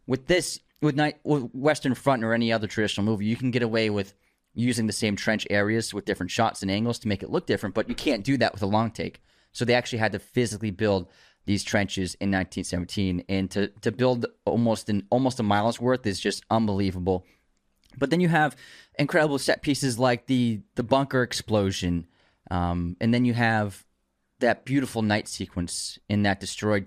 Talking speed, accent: 200 wpm, American